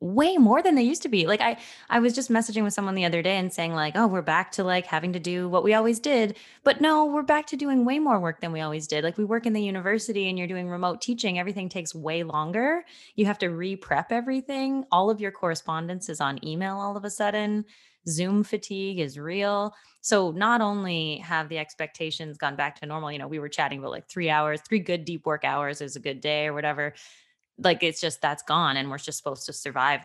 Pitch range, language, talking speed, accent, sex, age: 155-215 Hz, English, 245 wpm, American, female, 20-39